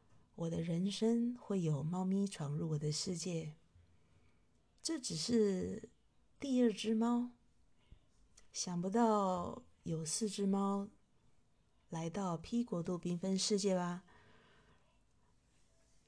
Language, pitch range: Chinese, 160-210 Hz